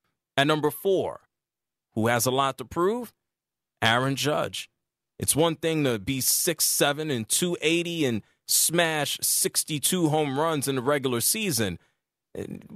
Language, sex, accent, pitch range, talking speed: English, male, American, 125-165 Hz, 135 wpm